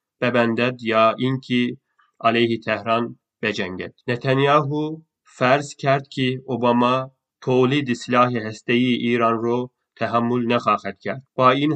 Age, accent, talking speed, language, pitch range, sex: 30-49, native, 105 wpm, Turkish, 110-125 Hz, male